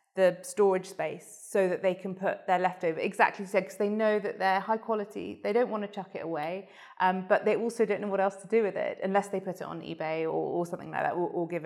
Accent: British